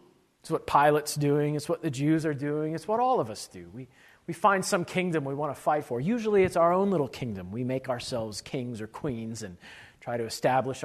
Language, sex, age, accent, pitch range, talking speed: English, male, 40-59, American, 150-220 Hz, 230 wpm